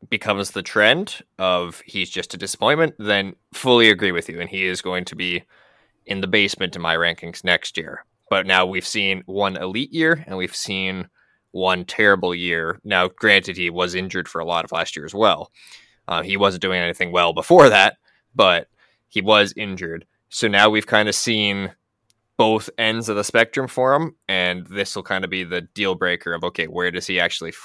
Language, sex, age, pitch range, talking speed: English, male, 20-39, 90-105 Hz, 200 wpm